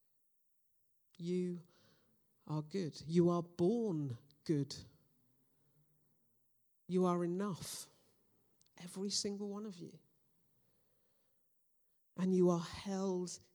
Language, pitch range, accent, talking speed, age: English, 150-190 Hz, British, 85 wpm, 50-69